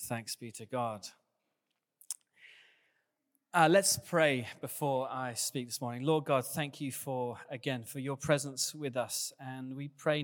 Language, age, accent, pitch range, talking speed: English, 30-49, British, 130-175 Hz, 150 wpm